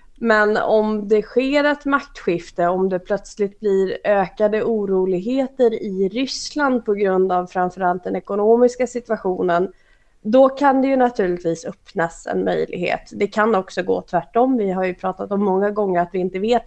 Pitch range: 185-220 Hz